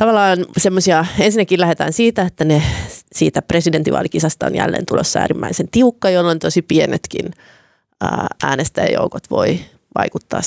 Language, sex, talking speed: Finnish, female, 115 wpm